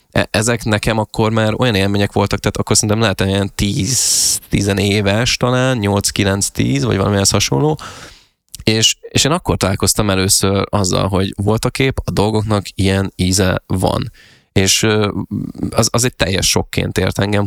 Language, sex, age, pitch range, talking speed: Hungarian, male, 20-39, 100-110 Hz, 155 wpm